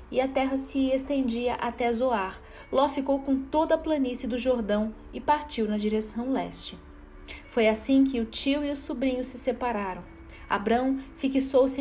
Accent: Brazilian